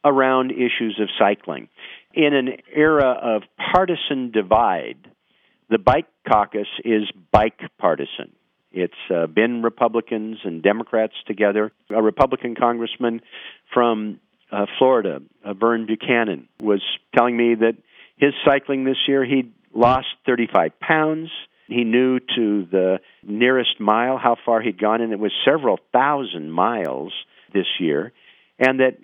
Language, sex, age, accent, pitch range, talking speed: English, male, 50-69, American, 110-135 Hz, 130 wpm